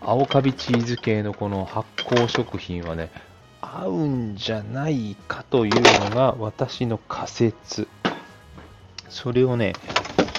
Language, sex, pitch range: Japanese, male, 90-120 Hz